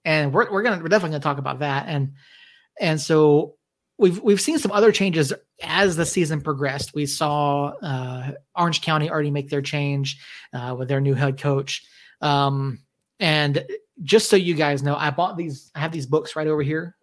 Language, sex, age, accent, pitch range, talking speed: English, male, 30-49, American, 140-165 Hz, 200 wpm